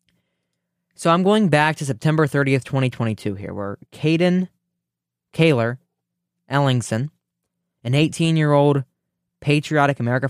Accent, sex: American, male